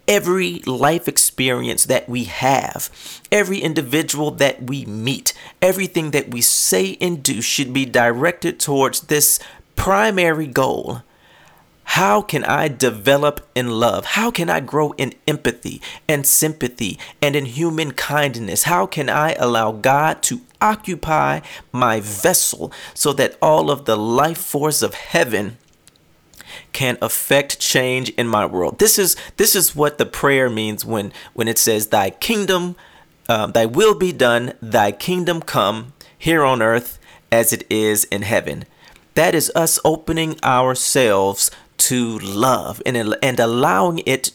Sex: male